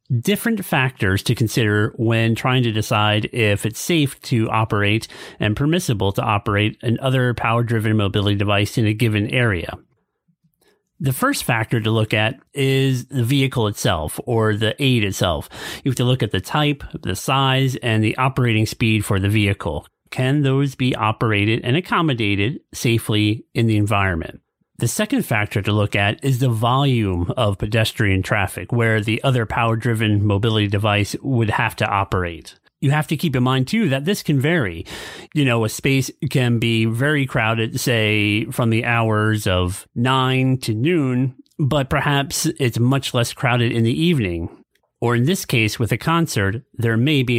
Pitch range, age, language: 105-135 Hz, 30-49, English